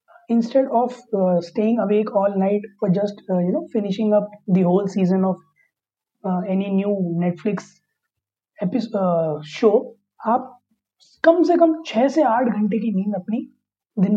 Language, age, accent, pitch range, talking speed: Hindi, 20-39, native, 190-245 Hz, 115 wpm